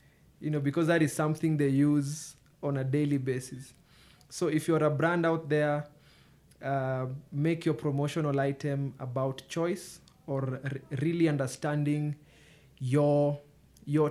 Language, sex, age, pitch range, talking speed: English, male, 20-39, 130-155 Hz, 135 wpm